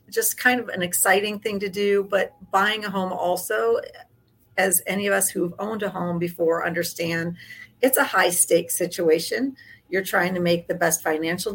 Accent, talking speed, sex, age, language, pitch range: American, 180 wpm, female, 40-59, English, 170-205 Hz